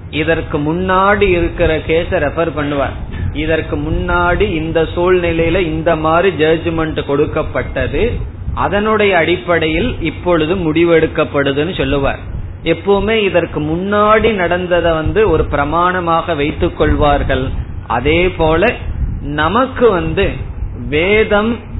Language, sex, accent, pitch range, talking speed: Tamil, male, native, 145-190 Hz, 85 wpm